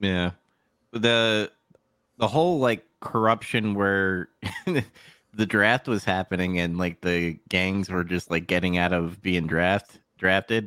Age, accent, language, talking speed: 30-49, American, English, 135 wpm